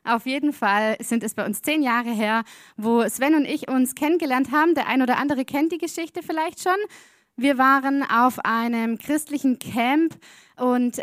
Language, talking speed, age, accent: German, 180 wpm, 20-39, German